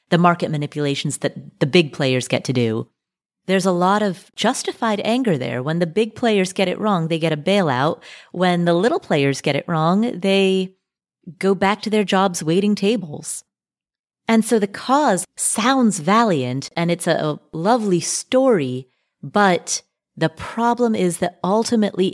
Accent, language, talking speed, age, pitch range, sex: American, English, 165 wpm, 30-49, 155-200 Hz, female